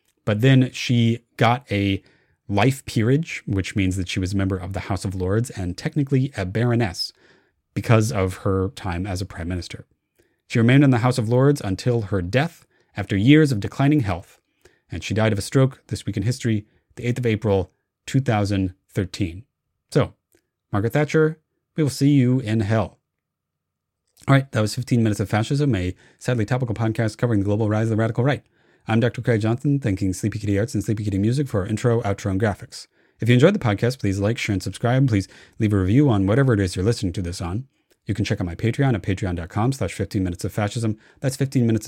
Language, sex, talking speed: English, male, 210 wpm